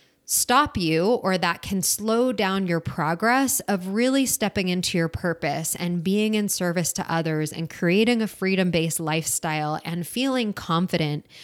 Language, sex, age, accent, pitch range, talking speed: English, female, 20-39, American, 165-210 Hz, 150 wpm